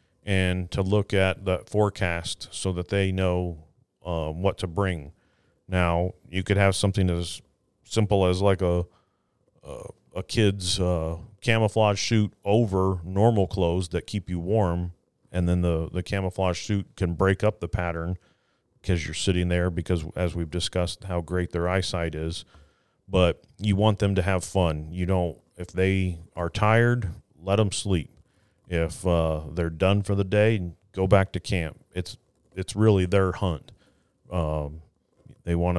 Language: English